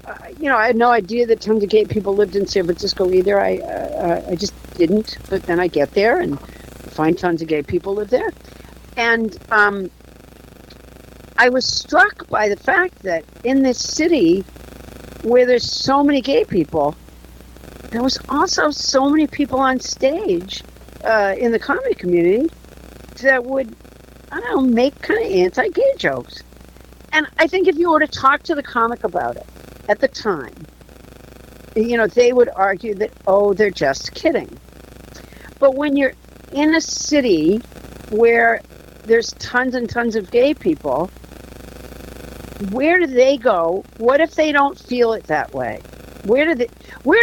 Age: 60-79